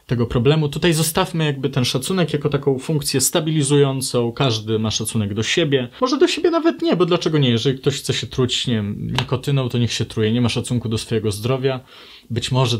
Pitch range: 115-145 Hz